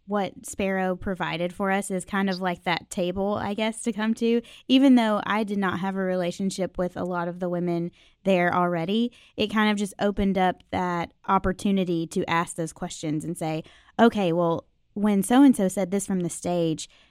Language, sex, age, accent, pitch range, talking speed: English, female, 20-39, American, 170-205 Hz, 195 wpm